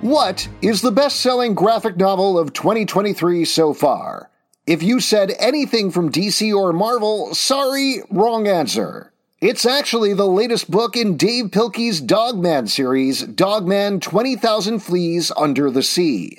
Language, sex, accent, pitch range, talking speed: English, male, American, 170-225 Hz, 135 wpm